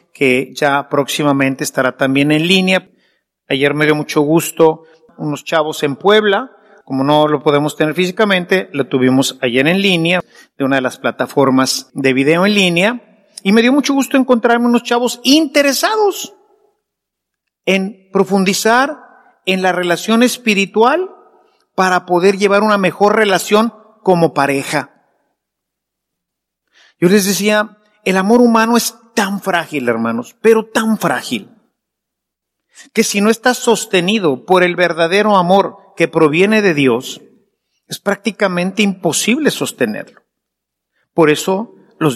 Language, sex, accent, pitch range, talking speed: English, male, Mexican, 160-220 Hz, 130 wpm